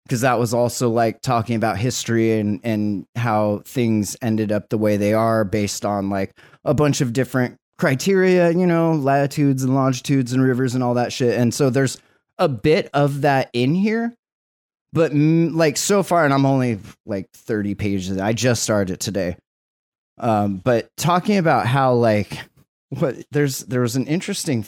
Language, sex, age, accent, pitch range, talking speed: English, male, 30-49, American, 105-145 Hz, 175 wpm